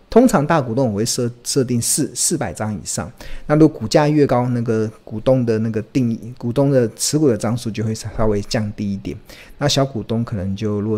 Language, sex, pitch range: Chinese, male, 110-135 Hz